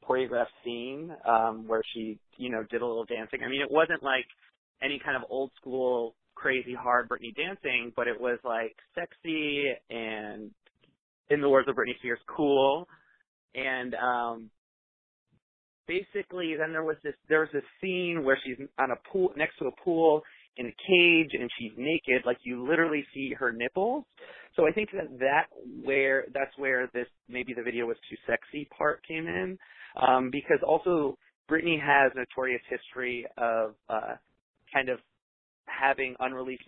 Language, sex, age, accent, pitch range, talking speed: English, male, 30-49, American, 115-140 Hz, 165 wpm